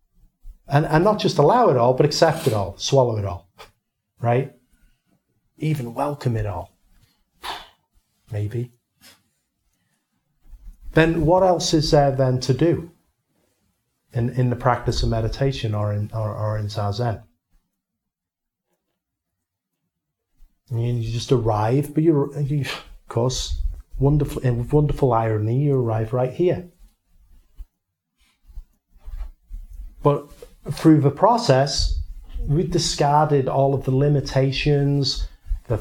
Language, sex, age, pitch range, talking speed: English, male, 30-49, 105-145 Hz, 115 wpm